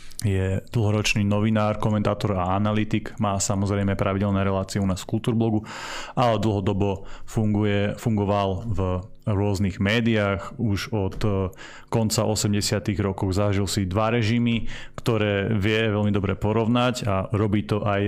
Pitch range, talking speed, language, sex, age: 100-110 Hz, 130 wpm, Slovak, male, 30-49